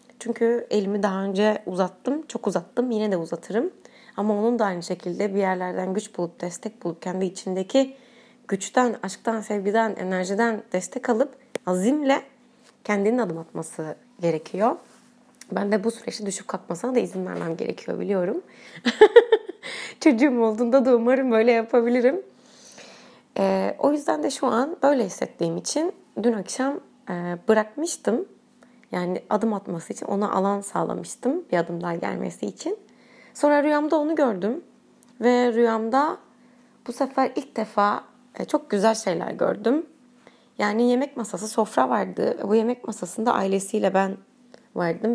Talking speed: 135 wpm